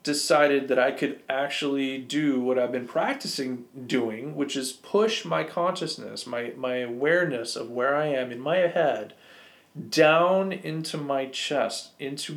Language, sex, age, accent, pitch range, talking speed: English, male, 40-59, American, 120-155 Hz, 150 wpm